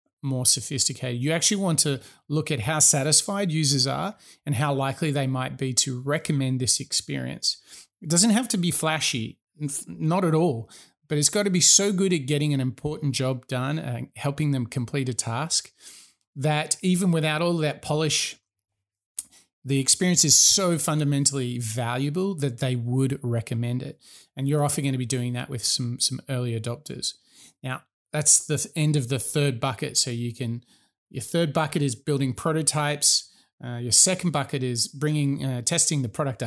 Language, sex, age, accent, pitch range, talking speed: English, male, 30-49, Australian, 130-155 Hz, 175 wpm